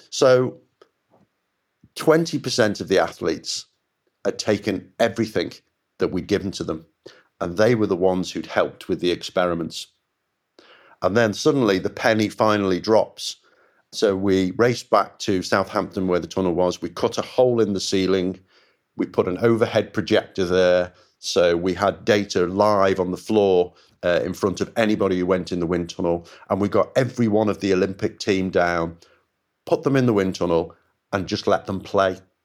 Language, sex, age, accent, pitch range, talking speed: English, male, 40-59, British, 90-110 Hz, 170 wpm